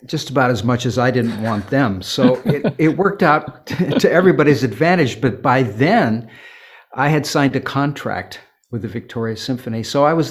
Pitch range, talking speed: 115-145 Hz, 185 wpm